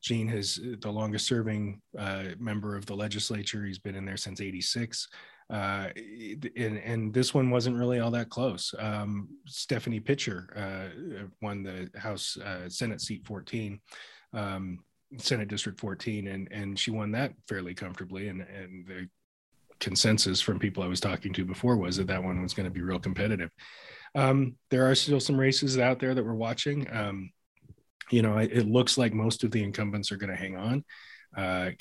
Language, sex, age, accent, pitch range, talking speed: English, male, 30-49, American, 95-115 Hz, 180 wpm